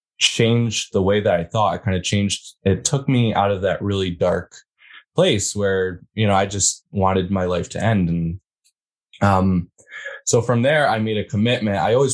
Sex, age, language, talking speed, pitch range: male, 20-39, English, 200 wpm, 90-105 Hz